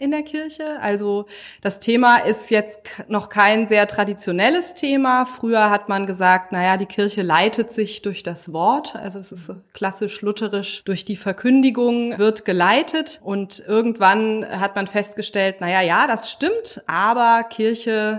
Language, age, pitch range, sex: German, 30-49, 180-220 Hz, female